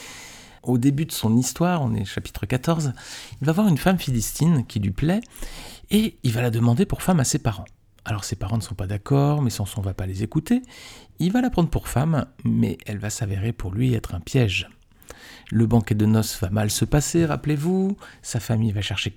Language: French